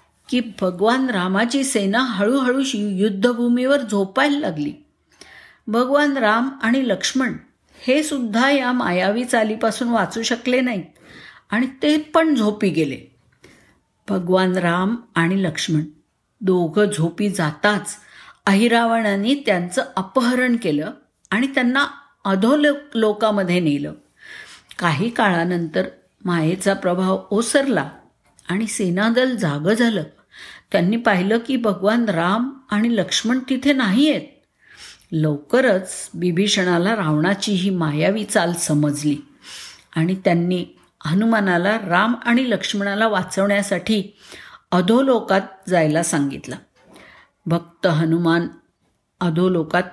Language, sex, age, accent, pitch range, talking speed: Marathi, female, 50-69, native, 180-240 Hz, 95 wpm